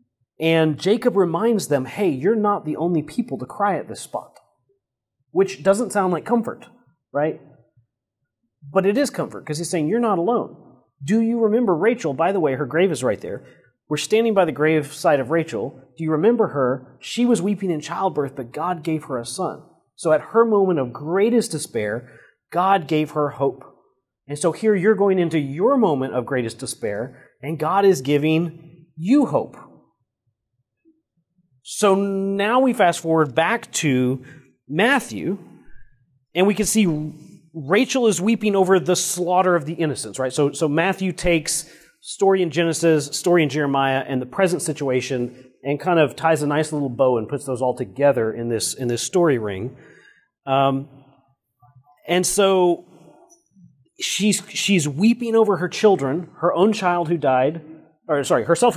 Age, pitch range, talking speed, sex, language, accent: 30-49, 135-190 Hz, 170 wpm, male, English, American